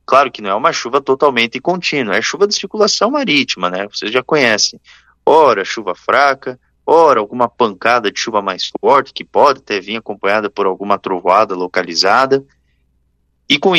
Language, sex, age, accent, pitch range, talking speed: Portuguese, male, 20-39, Brazilian, 100-165 Hz, 170 wpm